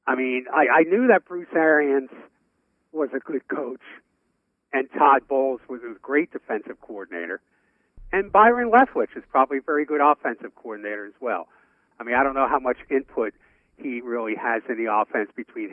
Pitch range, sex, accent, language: 135-210 Hz, male, American, English